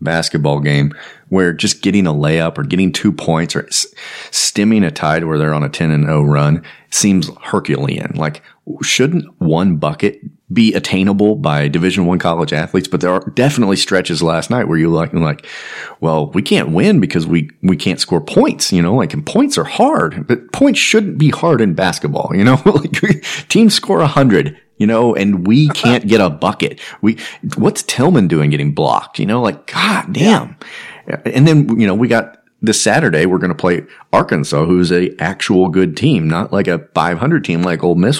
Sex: male